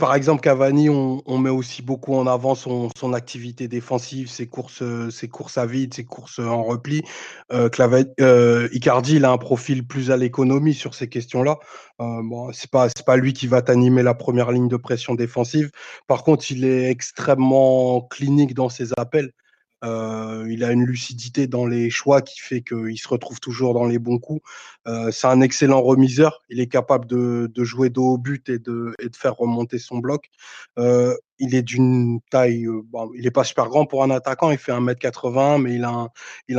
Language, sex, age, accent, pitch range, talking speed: French, male, 20-39, French, 120-130 Hz, 210 wpm